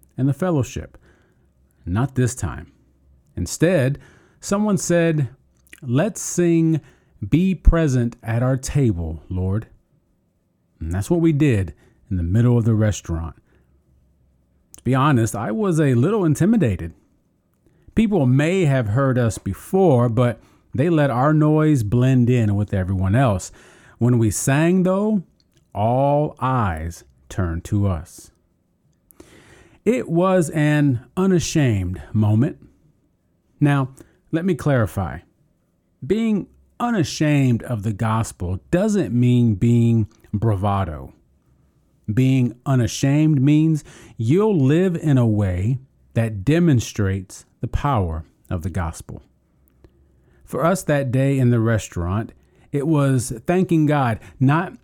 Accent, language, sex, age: American, English, male, 40-59